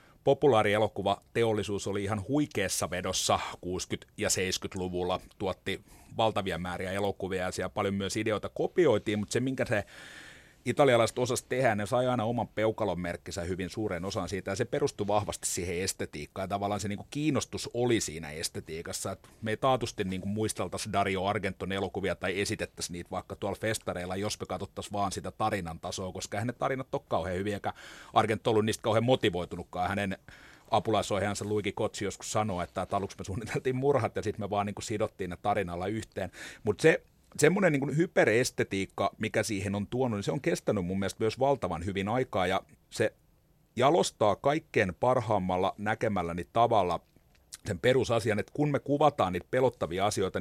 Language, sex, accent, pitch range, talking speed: Finnish, male, native, 95-115 Hz, 170 wpm